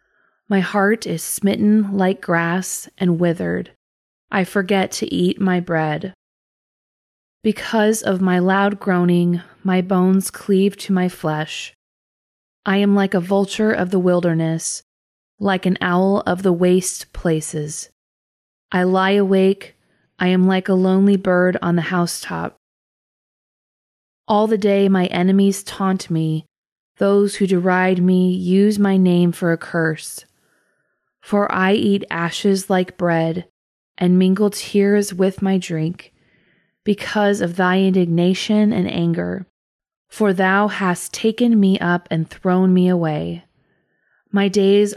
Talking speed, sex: 130 wpm, female